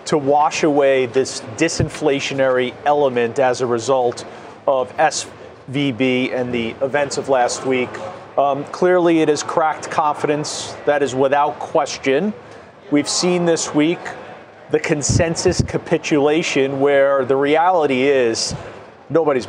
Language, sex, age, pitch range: English, male, 40-59, 135-165 Hz